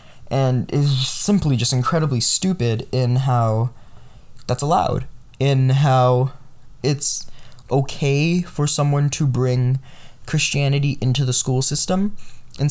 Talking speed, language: 115 wpm, English